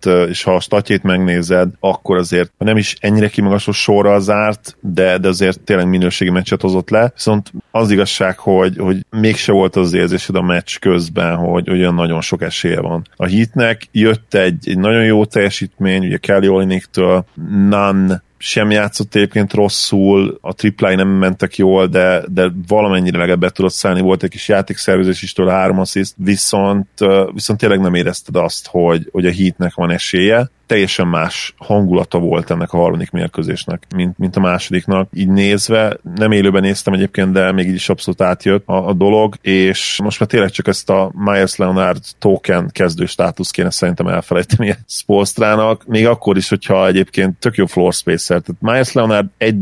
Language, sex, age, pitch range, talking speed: Hungarian, male, 30-49, 90-105 Hz, 165 wpm